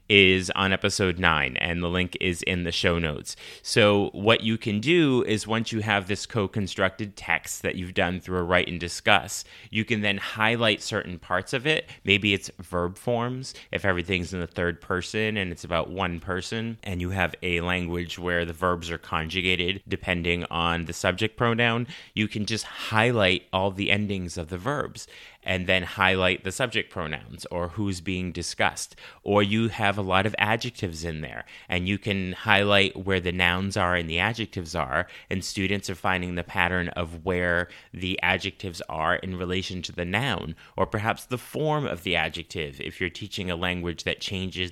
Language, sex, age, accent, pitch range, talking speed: English, male, 30-49, American, 90-105 Hz, 190 wpm